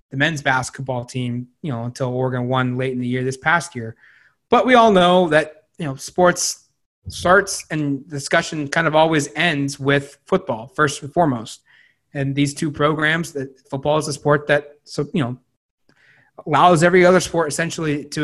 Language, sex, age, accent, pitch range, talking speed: English, male, 30-49, American, 130-150 Hz, 180 wpm